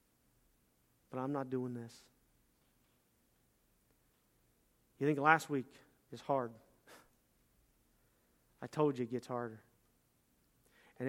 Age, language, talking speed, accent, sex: 40-59, English, 95 wpm, American, male